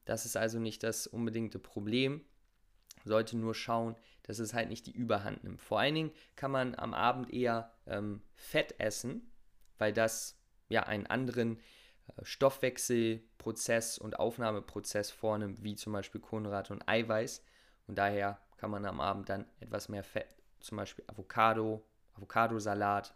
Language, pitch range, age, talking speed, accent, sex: German, 105-120 Hz, 20-39, 155 wpm, German, male